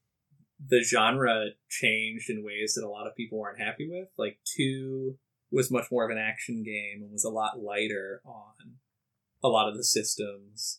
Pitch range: 105-130 Hz